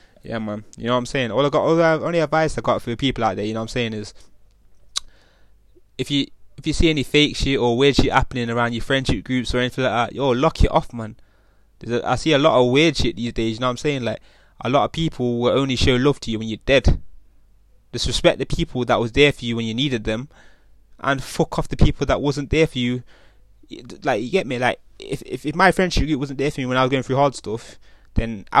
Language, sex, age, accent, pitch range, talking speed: English, male, 20-39, British, 115-140 Hz, 265 wpm